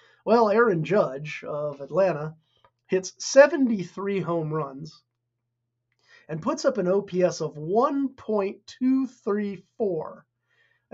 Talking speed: 90 wpm